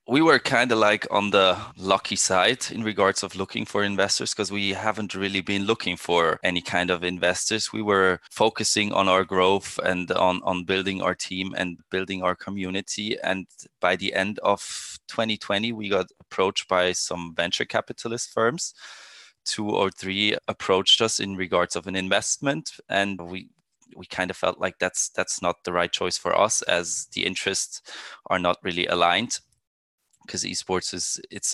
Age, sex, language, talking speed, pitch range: 20-39, male, English, 175 wpm, 90-105 Hz